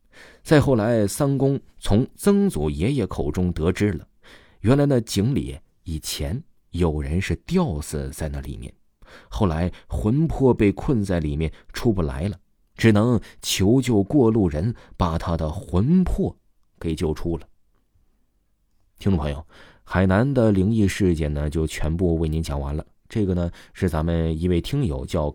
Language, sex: Chinese, male